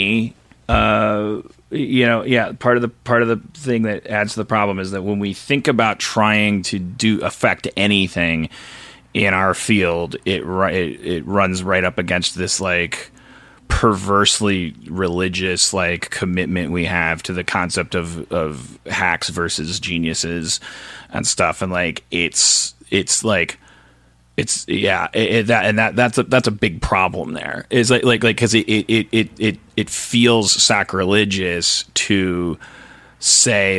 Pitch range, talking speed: 95-115 Hz, 155 wpm